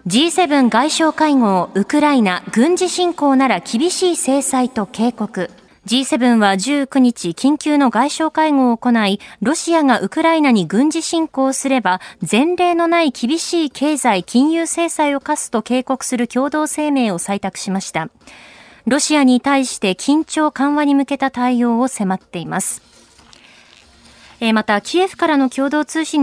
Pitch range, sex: 225-305 Hz, female